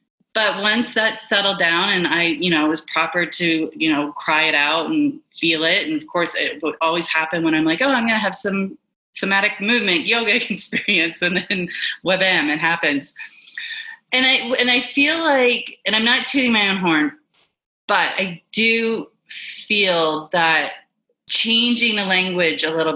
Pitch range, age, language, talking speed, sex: 160-225 Hz, 30-49, English, 180 wpm, female